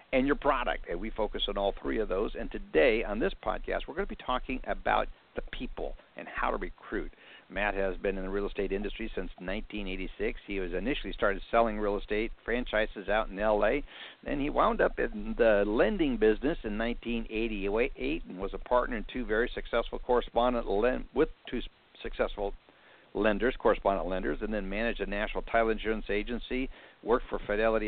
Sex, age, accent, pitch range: male, 60-79, American, 100-115 Hz